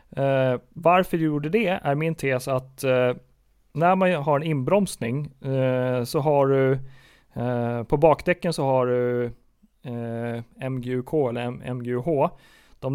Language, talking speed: Swedish, 145 wpm